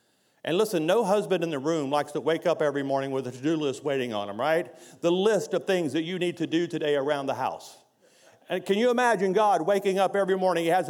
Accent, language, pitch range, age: American, English, 160-215 Hz, 50-69